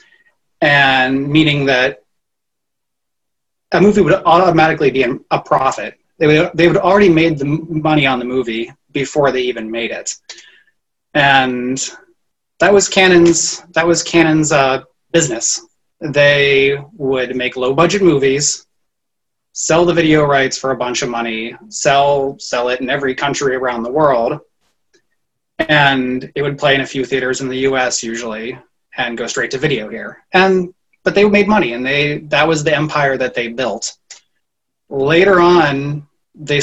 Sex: male